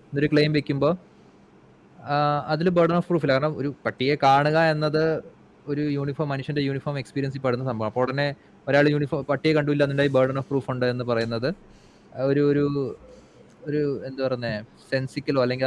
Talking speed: 180 wpm